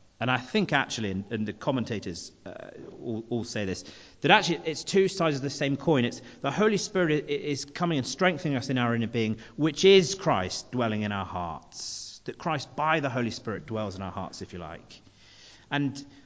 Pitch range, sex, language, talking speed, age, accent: 105-145 Hz, male, English, 195 wpm, 40-59, British